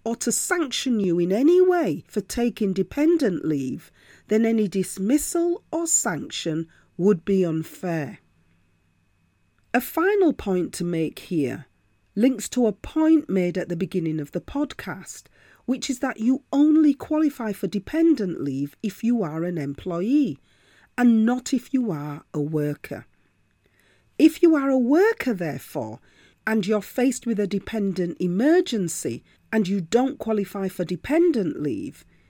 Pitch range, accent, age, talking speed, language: 170-265 Hz, British, 40-59, 145 wpm, English